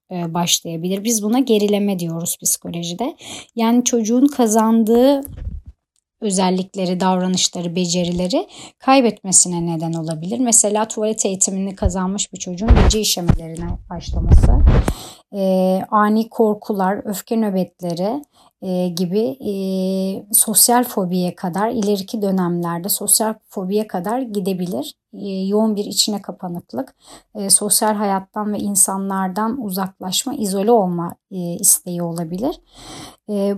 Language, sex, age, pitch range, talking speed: Turkish, male, 30-49, 185-245 Hz, 100 wpm